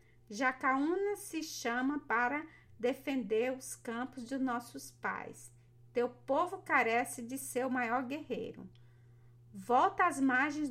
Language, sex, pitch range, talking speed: Portuguese, female, 205-265 Hz, 110 wpm